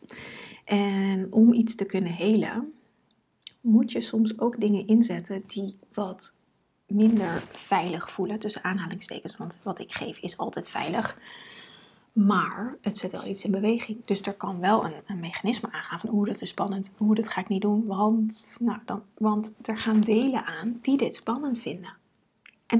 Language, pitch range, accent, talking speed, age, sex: Dutch, 195-220 Hz, Dutch, 165 wpm, 30-49, female